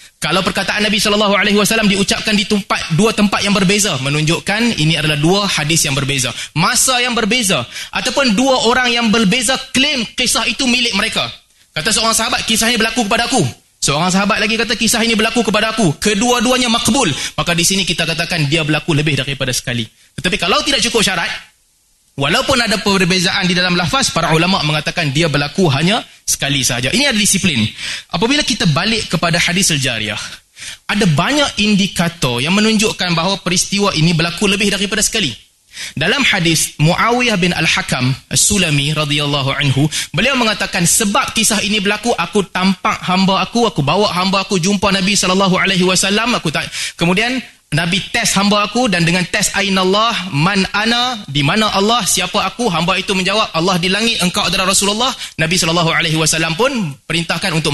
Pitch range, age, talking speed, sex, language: 165-220 Hz, 20-39, 165 wpm, male, Malay